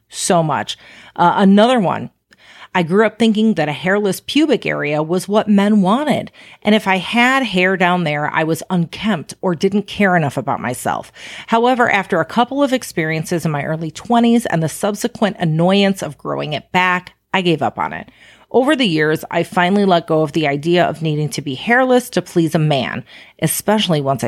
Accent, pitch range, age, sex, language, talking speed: American, 160-200 Hz, 40-59, female, English, 195 wpm